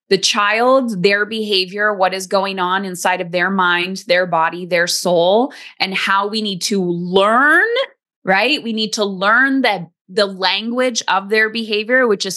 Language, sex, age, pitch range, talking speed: English, female, 20-39, 190-230 Hz, 170 wpm